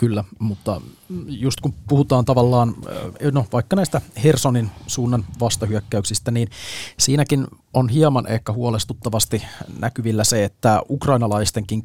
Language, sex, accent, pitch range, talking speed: Finnish, male, native, 105-125 Hz, 110 wpm